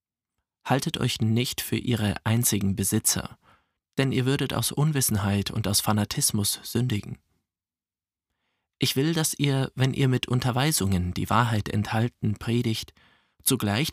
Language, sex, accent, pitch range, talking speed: German, male, German, 100-125 Hz, 125 wpm